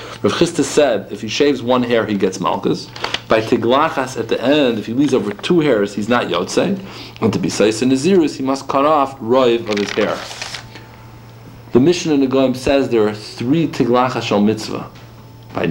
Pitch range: 110-130 Hz